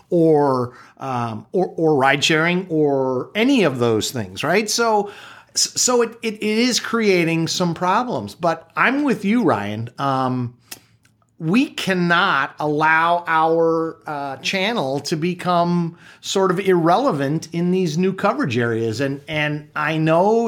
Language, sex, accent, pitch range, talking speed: English, male, American, 140-195 Hz, 135 wpm